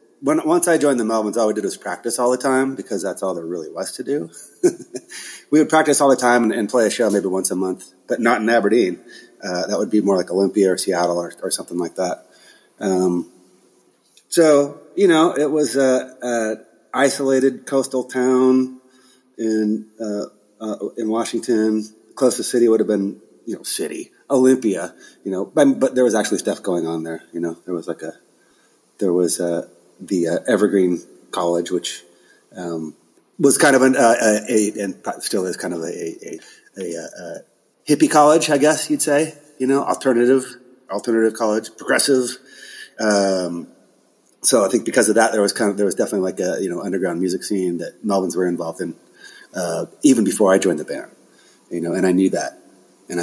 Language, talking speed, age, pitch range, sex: English, 200 wpm, 30-49, 95-130 Hz, male